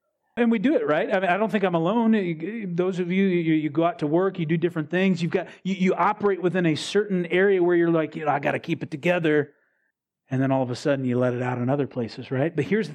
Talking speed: 285 wpm